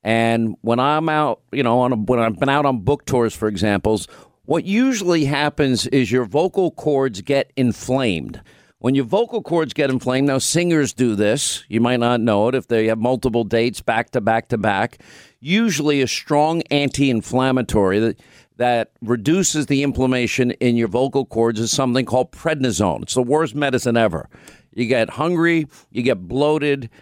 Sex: male